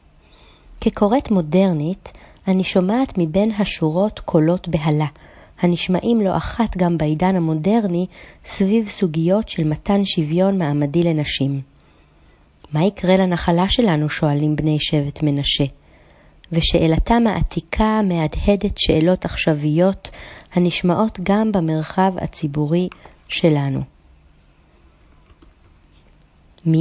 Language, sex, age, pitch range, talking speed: Hebrew, female, 30-49, 150-195 Hz, 90 wpm